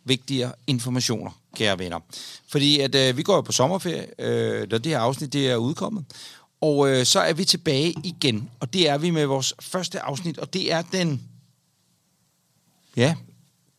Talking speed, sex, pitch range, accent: 175 wpm, male, 130-175 Hz, native